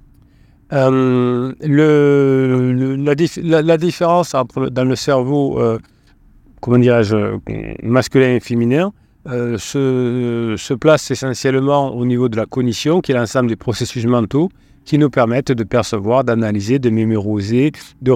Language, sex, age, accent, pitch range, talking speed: French, male, 40-59, French, 115-135 Hz, 135 wpm